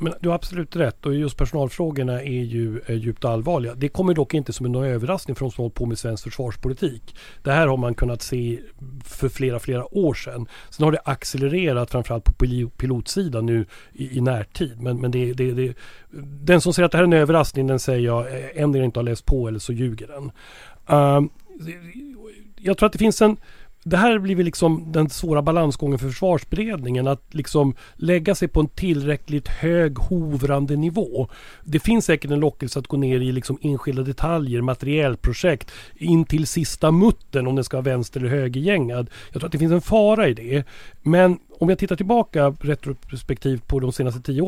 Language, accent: English, Swedish